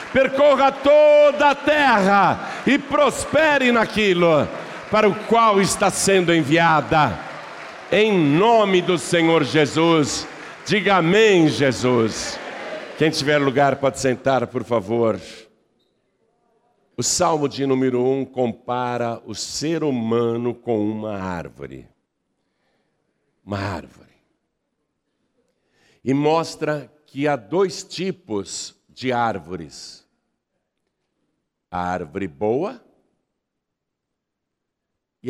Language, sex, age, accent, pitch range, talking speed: Portuguese, male, 60-79, Brazilian, 100-170 Hz, 90 wpm